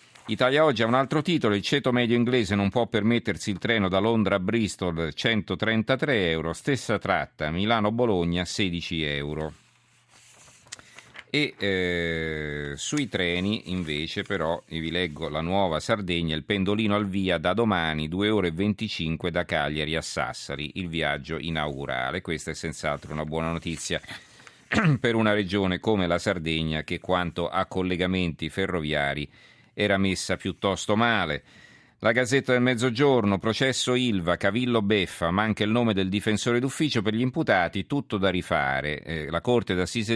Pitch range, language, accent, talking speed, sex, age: 85-115 Hz, Italian, native, 150 wpm, male, 40-59